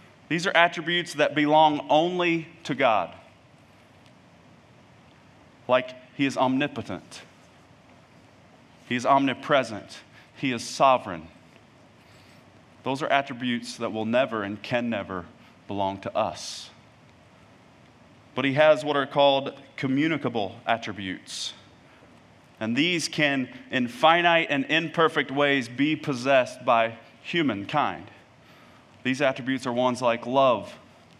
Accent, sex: American, male